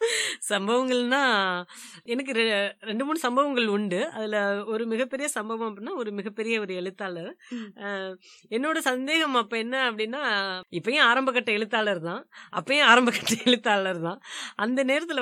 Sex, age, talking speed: female, 30-49, 130 wpm